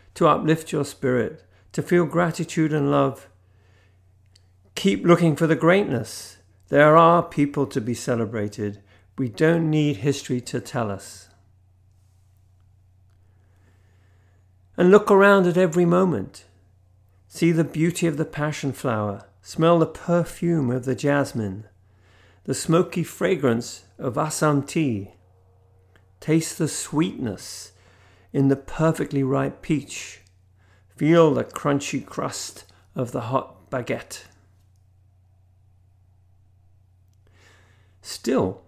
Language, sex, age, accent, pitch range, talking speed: English, male, 50-69, British, 95-155 Hz, 105 wpm